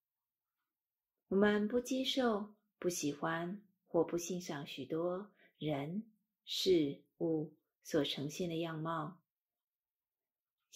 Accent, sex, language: native, female, Chinese